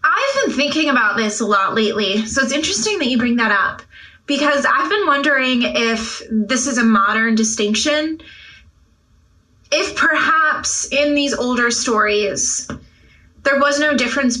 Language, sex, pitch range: English, female, 220-275 Hz